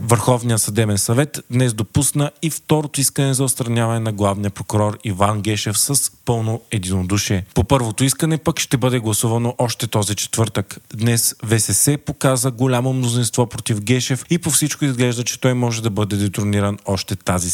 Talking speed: 160 wpm